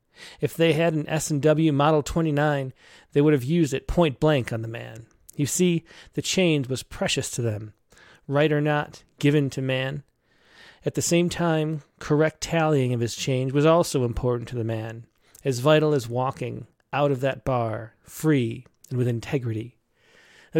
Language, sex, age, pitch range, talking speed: English, male, 30-49, 130-170 Hz, 170 wpm